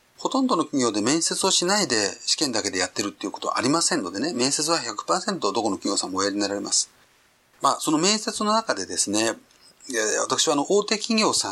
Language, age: Japanese, 40-59